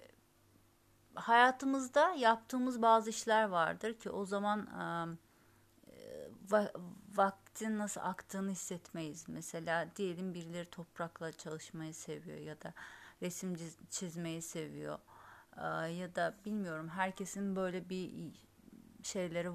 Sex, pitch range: female, 170-215 Hz